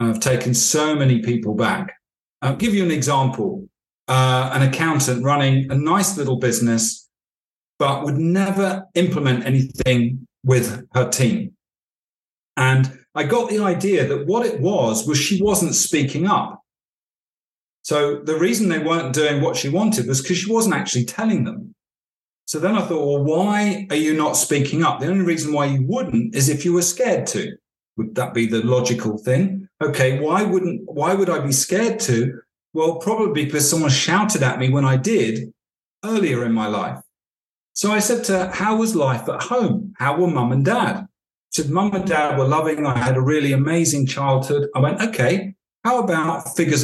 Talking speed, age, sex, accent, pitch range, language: 185 wpm, 40-59, male, British, 135-195 Hz, English